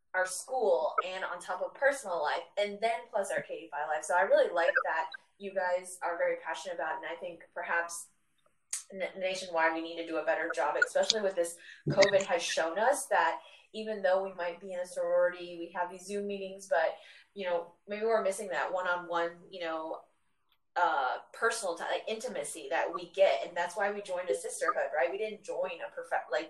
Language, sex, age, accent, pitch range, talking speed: English, female, 20-39, American, 175-230 Hz, 205 wpm